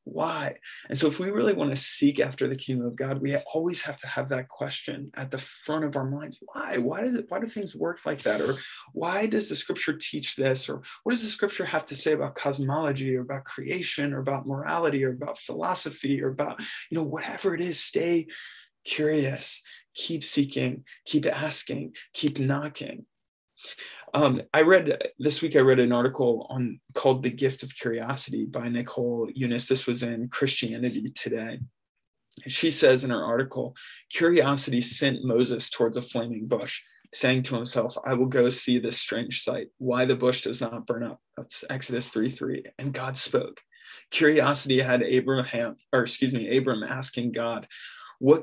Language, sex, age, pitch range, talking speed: English, male, 20-39, 125-150 Hz, 180 wpm